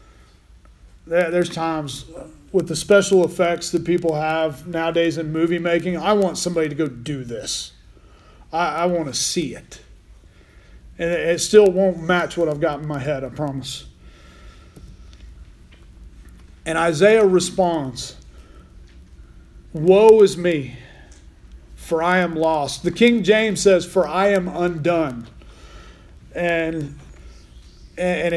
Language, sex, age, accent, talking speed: English, male, 40-59, American, 125 wpm